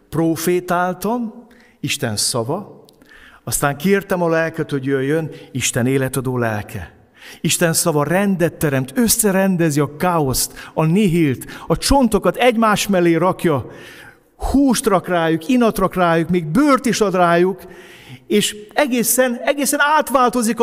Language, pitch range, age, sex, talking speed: Hungarian, 125-180 Hz, 50-69, male, 120 wpm